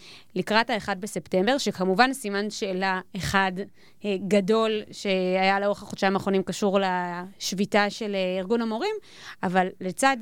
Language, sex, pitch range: Hebrew, female, 190-245 Hz